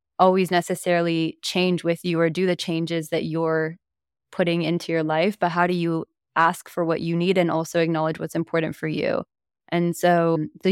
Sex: female